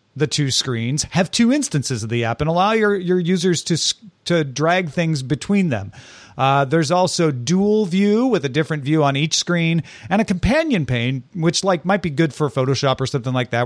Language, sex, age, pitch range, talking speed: English, male, 40-59, 130-180 Hz, 205 wpm